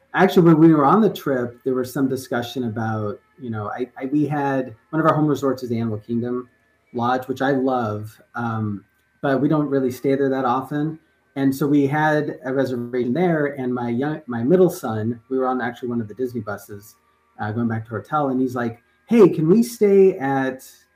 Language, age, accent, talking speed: English, 30-49, American, 215 wpm